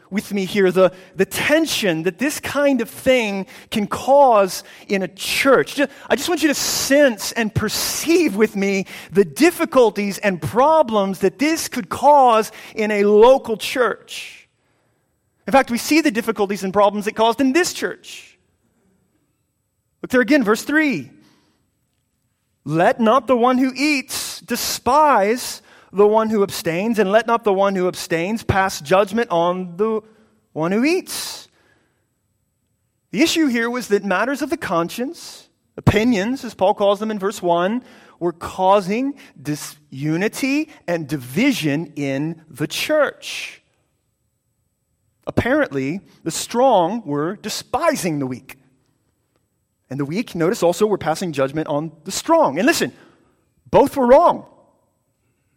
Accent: American